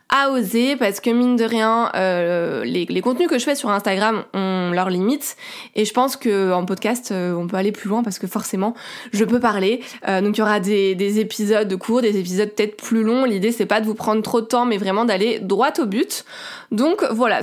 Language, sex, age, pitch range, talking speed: French, female, 20-39, 205-255 Hz, 240 wpm